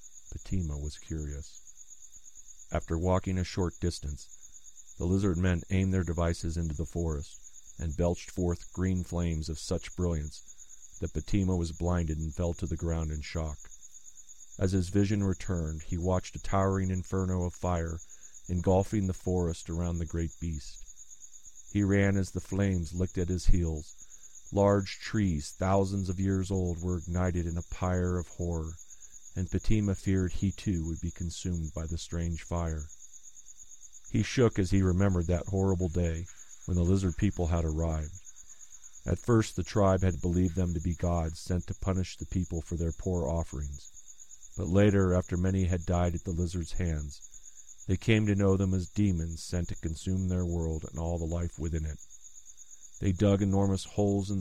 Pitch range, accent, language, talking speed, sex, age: 80-95 Hz, American, English, 170 wpm, male, 40-59